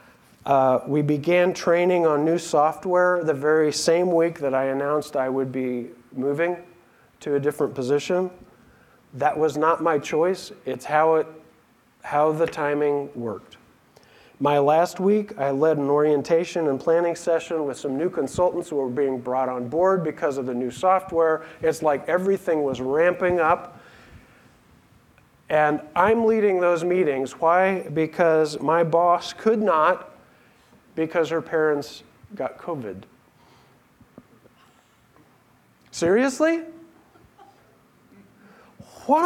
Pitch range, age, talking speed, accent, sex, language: 140-180 Hz, 40-59, 125 wpm, American, male, English